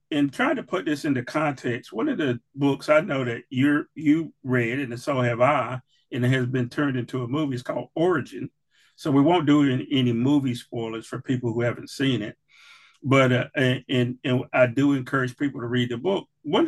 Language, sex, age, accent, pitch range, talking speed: English, male, 40-59, American, 125-150 Hz, 215 wpm